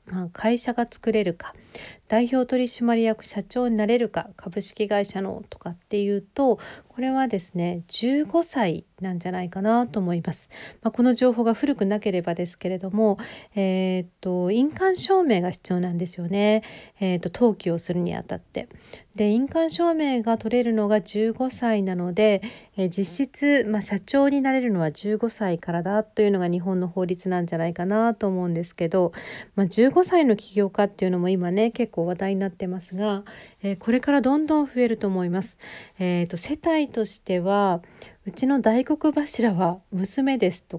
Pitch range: 180-235 Hz